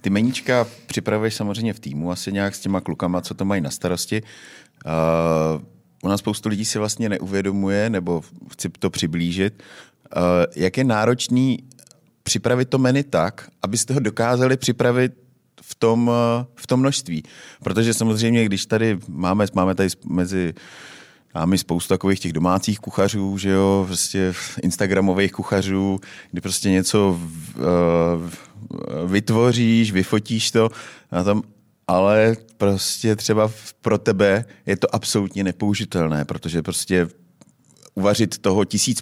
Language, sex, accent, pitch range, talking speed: Czech, male, native, 90-110 Hz, 130 wpm